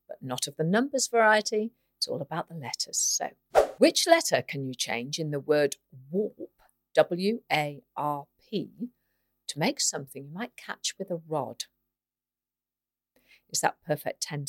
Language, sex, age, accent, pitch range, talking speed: English, female, 50-69, British, 145-225 Hz, 150 wpm